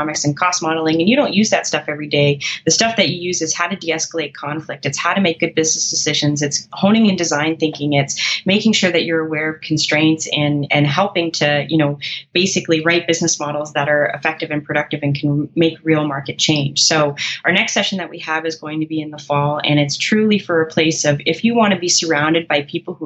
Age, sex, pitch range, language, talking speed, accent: 20-39, female, 150-170 Hz, English, 240 wpm, American